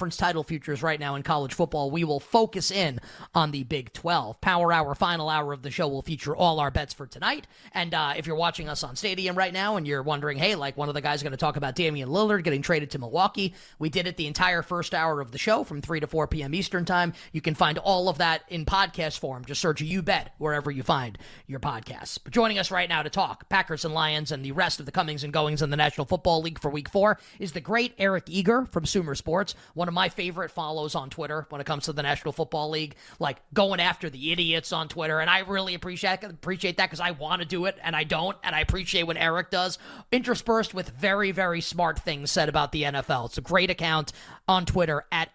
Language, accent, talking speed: English, American, 245 wpm